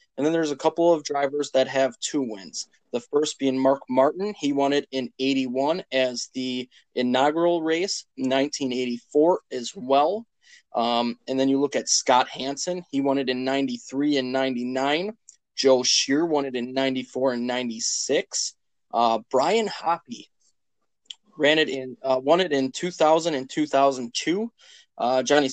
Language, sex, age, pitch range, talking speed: English, male, 20-39, 130-150 Hz, 155 wpm